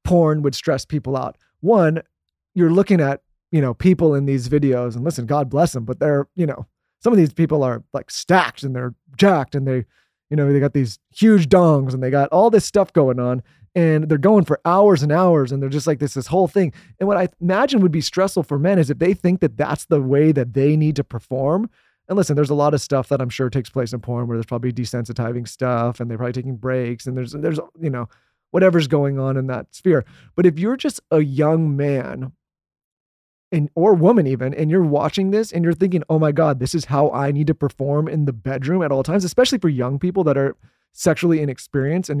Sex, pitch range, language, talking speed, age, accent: male, 130-170 Hz, English, 235 wpm, 30-49, American